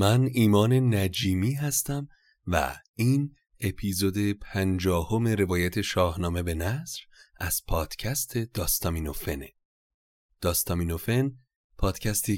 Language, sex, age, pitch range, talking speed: Persian, male, 30-49, 85-105 Hz, 80 wpm